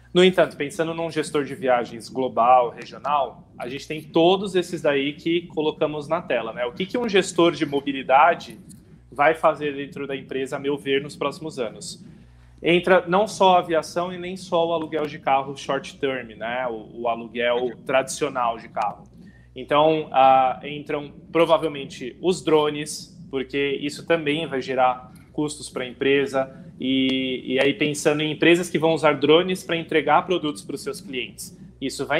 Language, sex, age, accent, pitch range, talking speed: Portuguese, male, 20-39, Brazilian, 130-165 Hz, 175 wpm